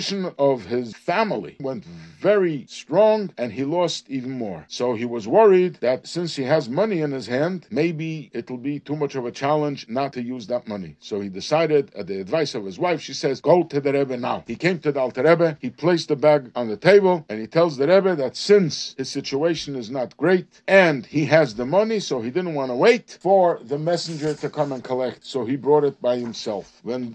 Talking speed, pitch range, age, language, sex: 230 wpm, 130-180 Hz, 50-69, English, male